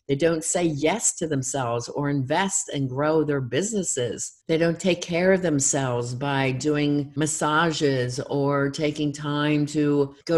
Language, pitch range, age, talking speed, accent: English, 135-155 Hz, 50-69, 150 wpm, American